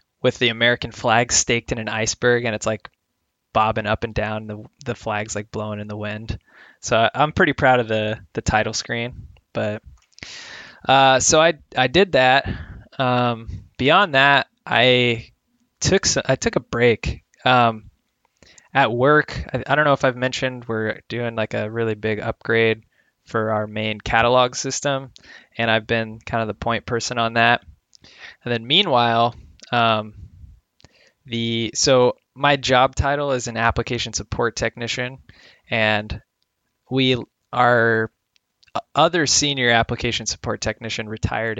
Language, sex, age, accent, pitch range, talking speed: English, male, 20-39, American, 110-130 Hz, 150 wpm